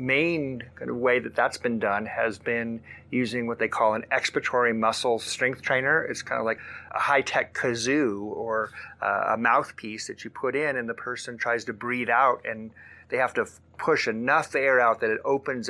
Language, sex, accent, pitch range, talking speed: English, male, American, 105-120 Hz, 205 wpm